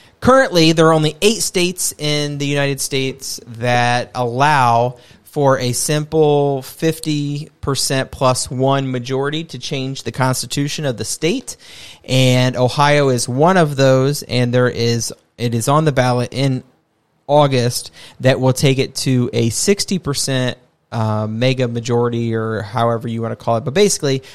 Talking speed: 150 wpm